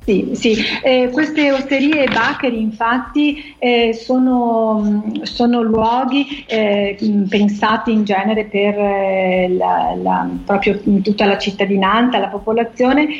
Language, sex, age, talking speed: Italian, female, 40-59, 120 wpm